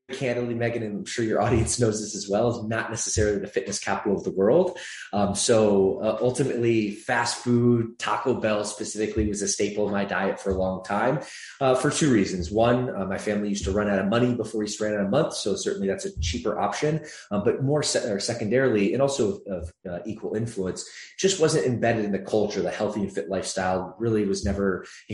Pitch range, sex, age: 100-115 Hz, male, 20-39